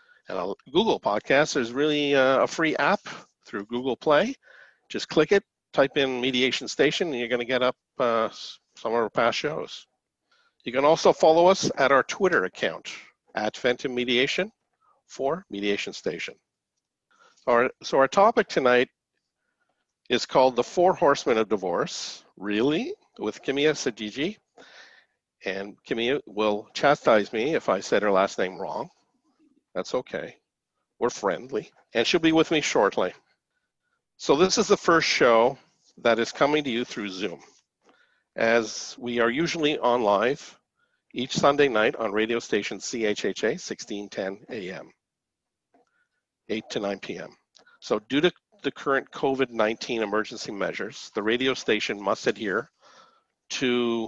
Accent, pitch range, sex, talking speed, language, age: American, 115-180 Hz, male, 145 wpm, English, 50-69